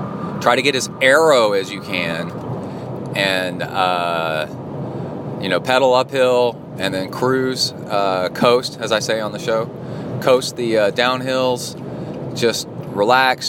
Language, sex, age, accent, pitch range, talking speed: English, male, 30-49, American, 95-130 Hz, 140 wpm